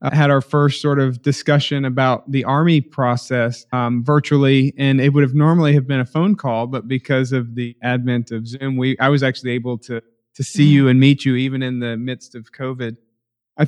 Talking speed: 215 wpm